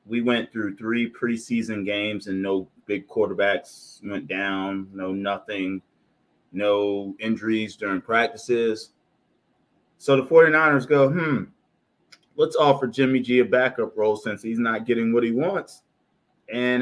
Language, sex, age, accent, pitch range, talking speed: English, male, 20-39, American, 120-155 Hz, 135 wpm